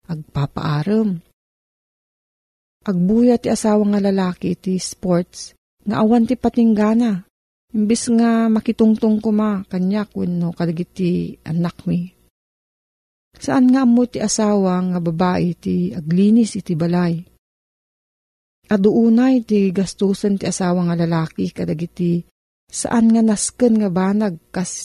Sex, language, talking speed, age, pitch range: female, Filipino, 110 wpm, 40-59, 170-215 Hz